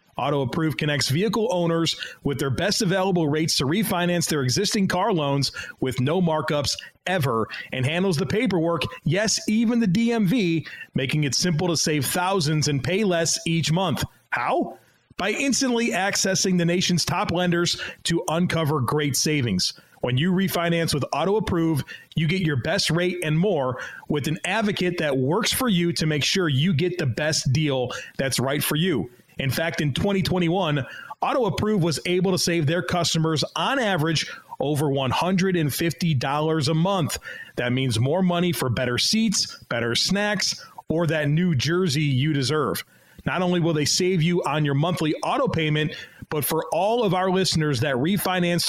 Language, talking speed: English, 165 wpm